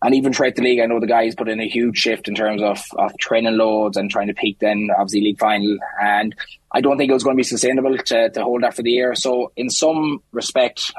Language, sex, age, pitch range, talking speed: English, male, 20-39, 105-125 Hz, 270 wpm